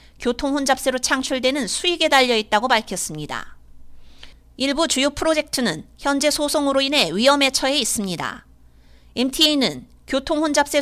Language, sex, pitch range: Korean, female, 225-290 Hz